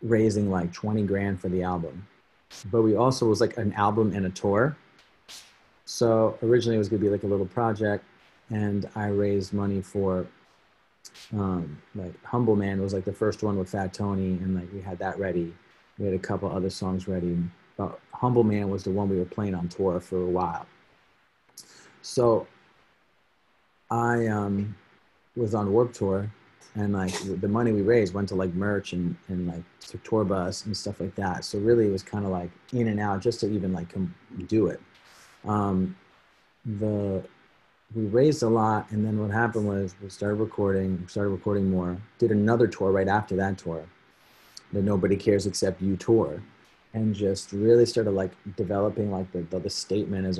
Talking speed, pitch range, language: 185 wpm, 95-110 Hz, English